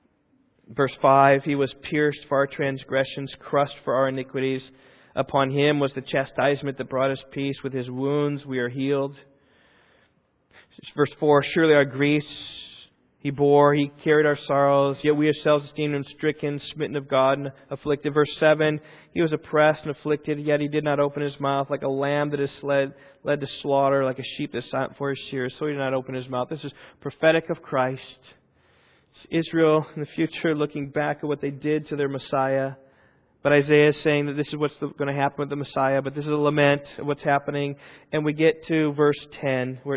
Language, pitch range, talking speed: English, 135-150 Hz, 200 wpm